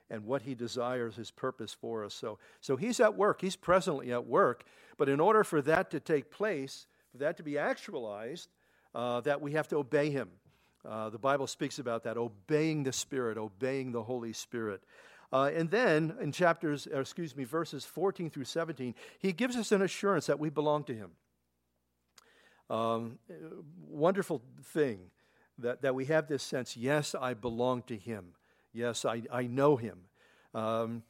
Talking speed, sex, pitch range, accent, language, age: 175 wpm, male, 120-155 Hz, American, English, 50-69